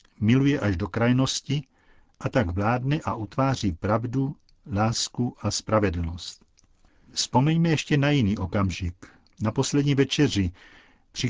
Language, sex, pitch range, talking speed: Czech, male, 100-130 Hz, 115 wpm